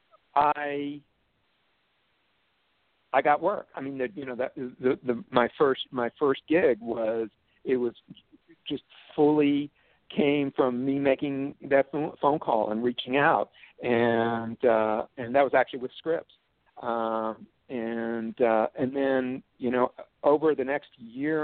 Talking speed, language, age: 145 wpm, English, 60-79